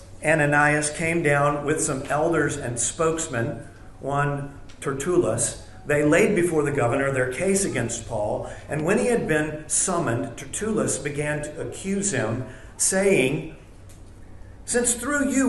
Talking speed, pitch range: 130 wpm, 120-185 Hz